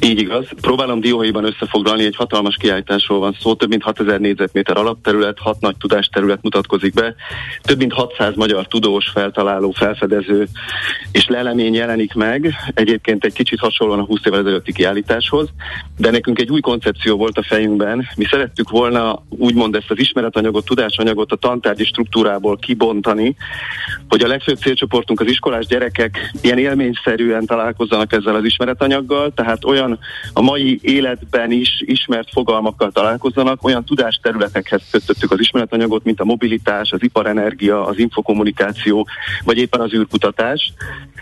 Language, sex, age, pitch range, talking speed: Hungarian, male, 30-49, 105-125 Hz, 145 wpm